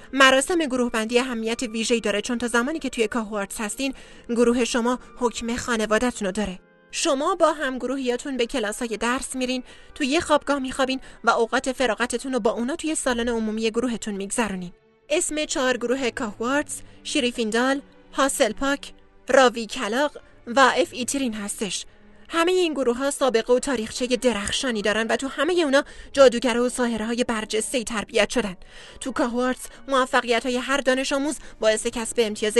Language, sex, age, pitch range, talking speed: Persian, female, 30-49, 225-265 Hz, 140 wpm